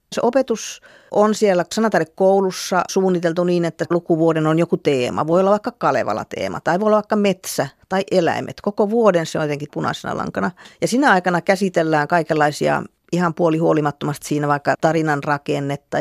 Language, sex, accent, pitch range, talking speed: Finnish, female, native, 150-185 Hz, 155 wpm